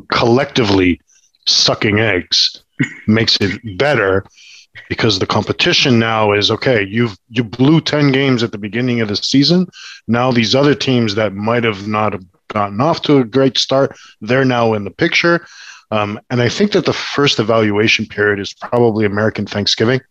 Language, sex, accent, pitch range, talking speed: English, male, Canadian, 105-130 Hz, 160 wpm